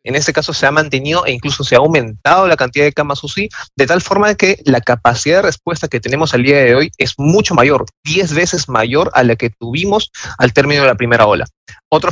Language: Spanish